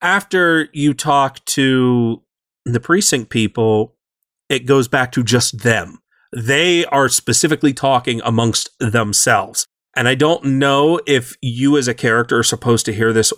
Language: English